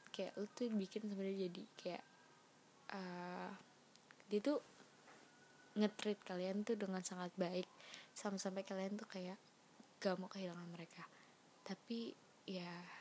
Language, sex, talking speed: Indonesian, female, 120 wpm